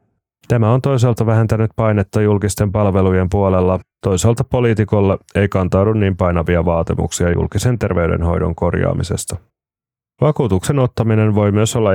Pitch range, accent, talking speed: 90-110 Hz, native, 115 wpm